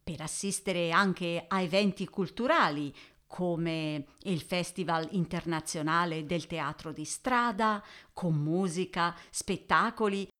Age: 50-69